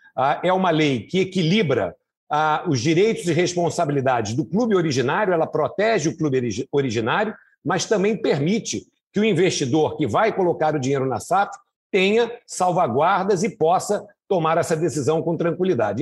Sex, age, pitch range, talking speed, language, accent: male, 50-69, 165-220 Hz, 145 wpm, Portuguese, Brazilian